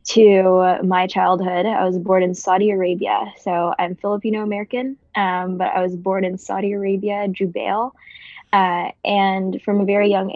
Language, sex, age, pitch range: English, female, 10-29, 180-205 Hz